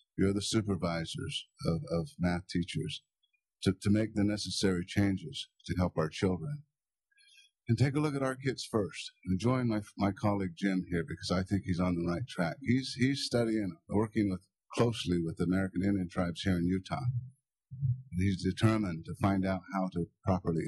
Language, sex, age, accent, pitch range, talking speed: English, male, 50-69, American, 90-115 Hz, 185 wpm